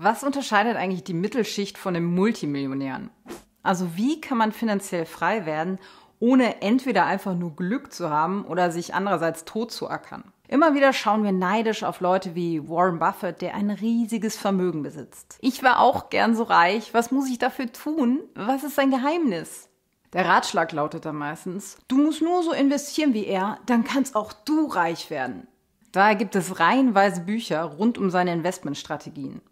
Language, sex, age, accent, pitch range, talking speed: German, female, 30-49, German, 180-240 Hz, 175 wpm